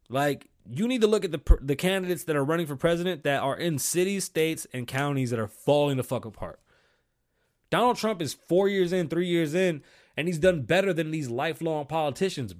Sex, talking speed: male, 210 wpm